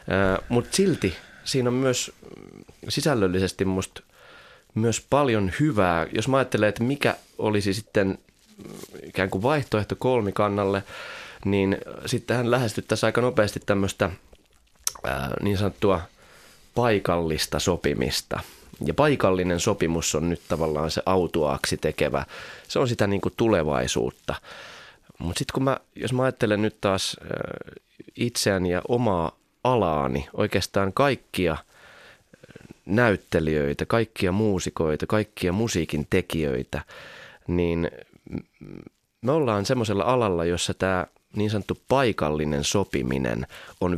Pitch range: 85-110 Hz